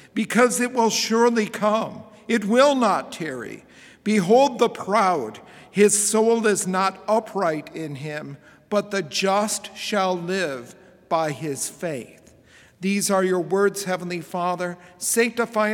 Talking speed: 130 wpm